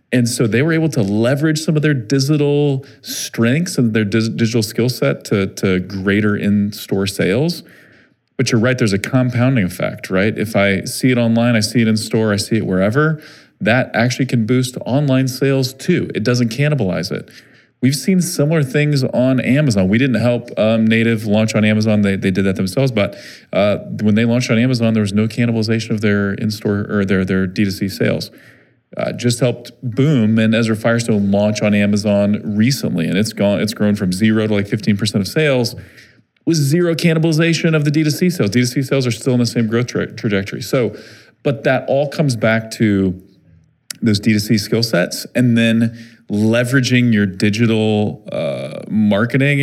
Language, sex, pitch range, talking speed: English, male, 105-130 Hz, 180 wpm